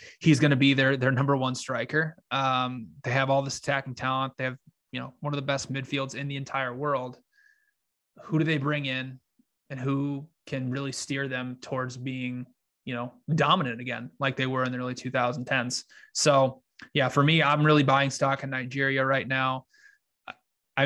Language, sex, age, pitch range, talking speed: English, male, 20-39, 130-145 Hz, 190 wpm